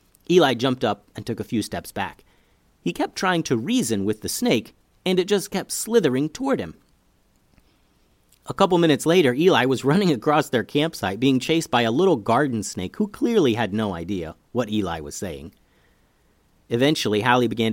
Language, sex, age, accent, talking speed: English, male, 40-59, American, 180 wpm